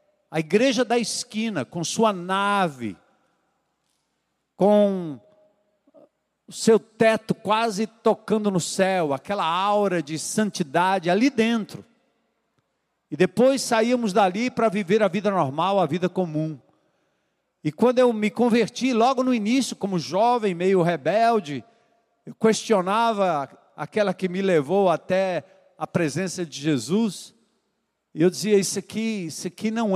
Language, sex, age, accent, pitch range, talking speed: Portuguese, male, 50-69, Brazilian, 175-220 Hz, 125 wpm